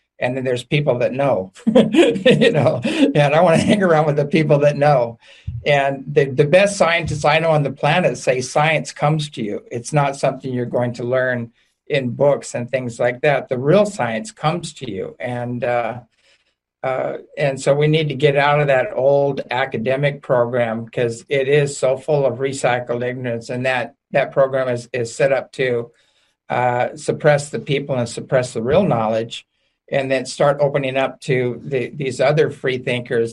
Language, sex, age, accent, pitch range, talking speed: English, male, 50-69, American, 120-145 Hz, 190 wpm